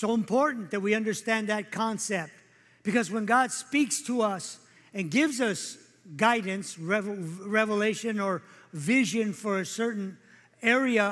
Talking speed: 130 wpm